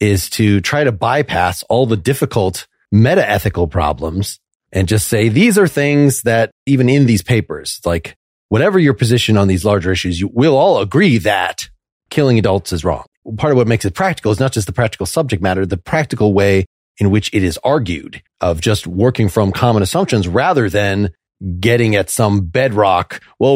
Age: 30-49